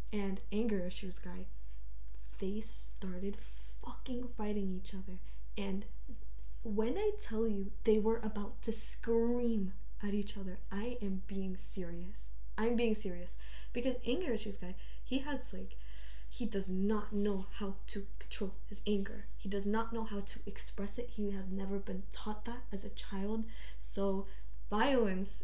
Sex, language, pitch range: female, English, 190-225 Hz